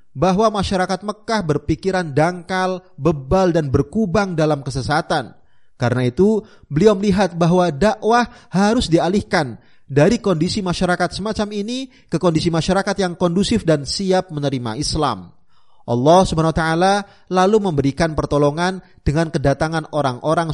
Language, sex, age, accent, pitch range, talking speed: Indonesian, male, 30-49, native, 145-190 Hz, 115 wpm